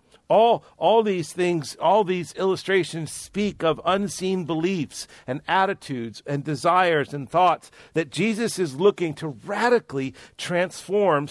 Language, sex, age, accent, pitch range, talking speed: English, male, 50-69, American, 155-195 Hz, 125 wpm